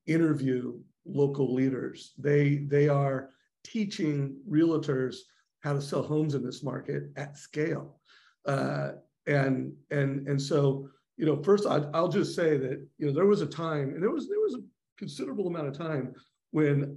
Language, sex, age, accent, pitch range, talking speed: English, male, 50-69, American, 135-160 Hz, 165 wpm